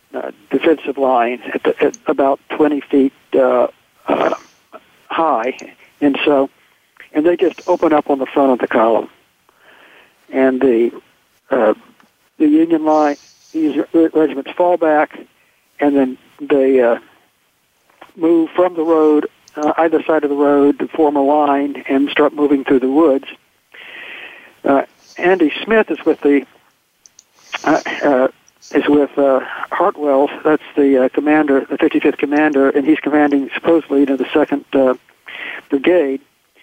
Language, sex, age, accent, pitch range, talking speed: English, male, 60-79, American, 140-165 Hz, 140 wpm